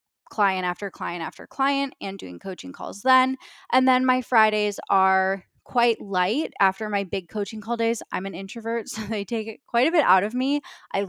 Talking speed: 195 wpm